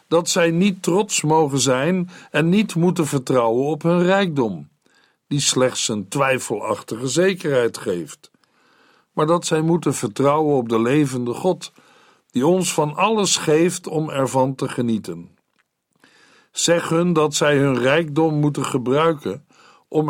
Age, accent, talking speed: 60-79, Dutch, 135 wpm